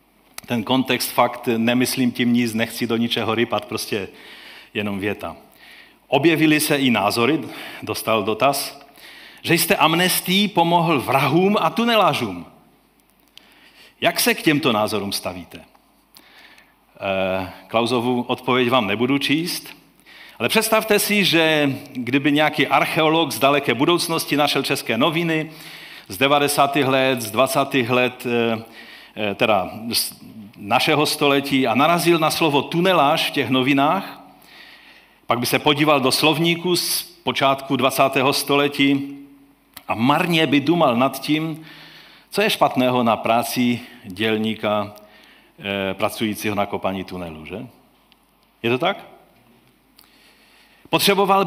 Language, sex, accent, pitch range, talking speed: Czech, male, native, 120-165 Hz, 115 wpm